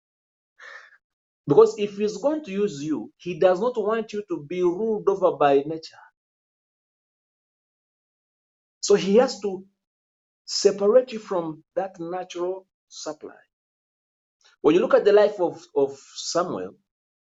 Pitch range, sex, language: 140-205 Hz, male, English